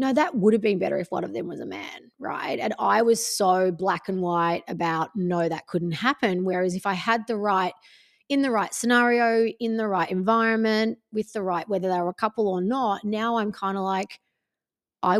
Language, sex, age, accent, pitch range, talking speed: English, female, 30-49, Australian, 185-245 Hz, 215 wpm